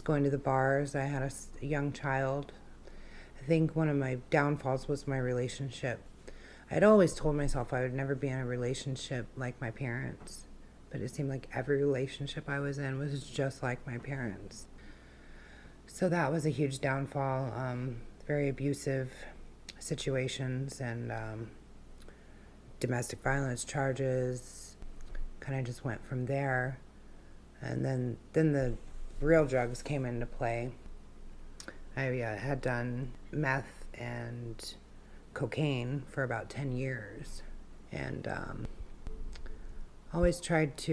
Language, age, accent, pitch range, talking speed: English, 30-49, American, 125-145 Hz, 135 wpm